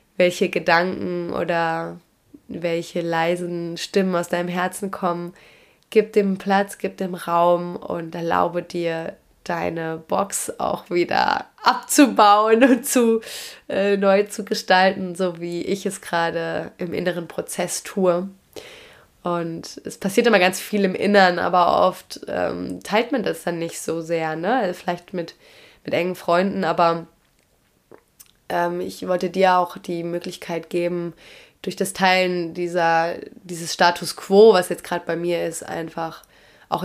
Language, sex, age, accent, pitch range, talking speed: German, female, 20-39, German, 170-195 Hz, 140 wpm